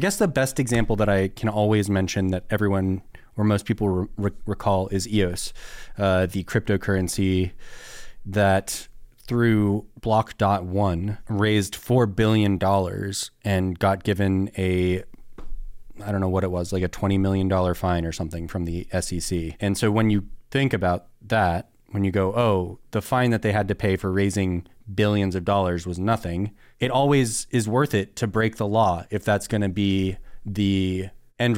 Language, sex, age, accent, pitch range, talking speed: English, male, 20-39, American, 95-110 Hz, 165 wpm